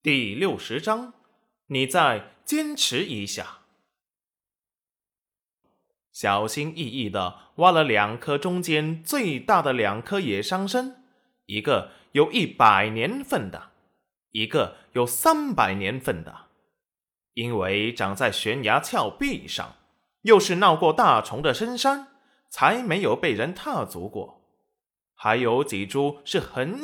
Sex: male